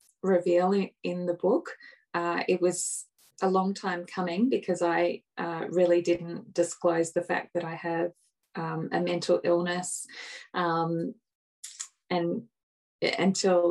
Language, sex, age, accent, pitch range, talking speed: English, female, 20-39, Australian, 170-190 Hz, 130 wpm